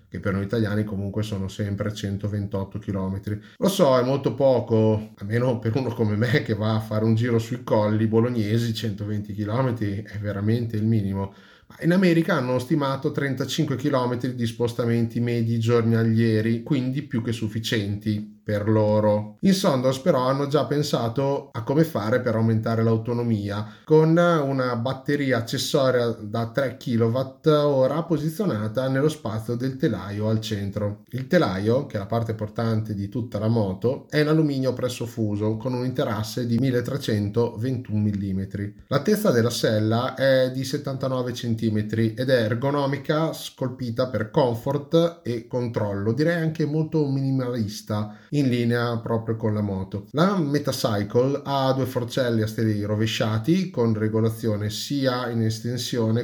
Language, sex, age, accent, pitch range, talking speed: Italian, male, 30-49, native, 110-130 Hz, 145 wpm